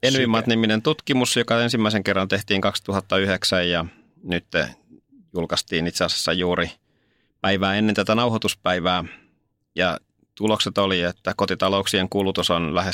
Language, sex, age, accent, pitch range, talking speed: Finnish, male, 30-49, native, 85-100 Hz, 115 wpm